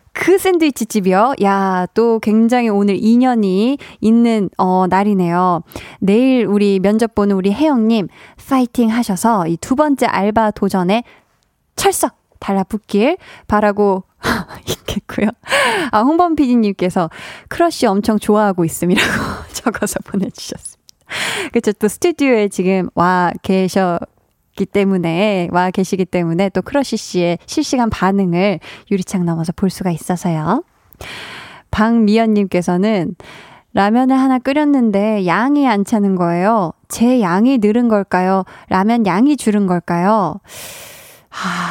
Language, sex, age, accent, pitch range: Korean, female, 20-39, native, 185-240 Hz